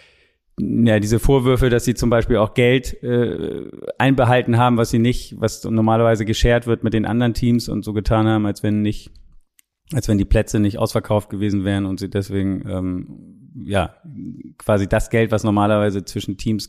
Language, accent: German, German